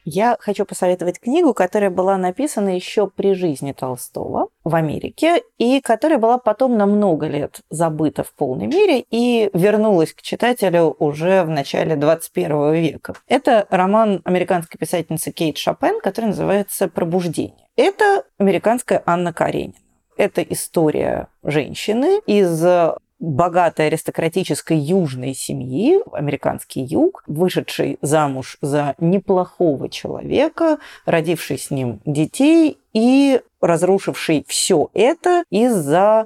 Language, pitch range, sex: Russian, 165-220 Hz, female